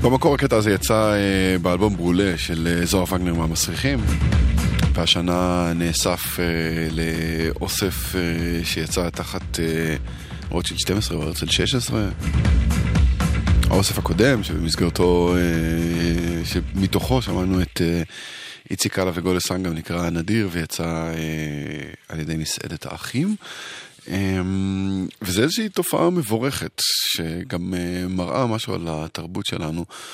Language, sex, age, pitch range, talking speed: Hebrew, male, 20-39, 85-100 Hz, 110 wpm